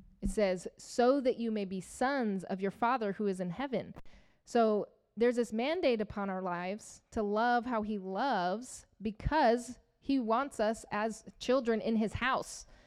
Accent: American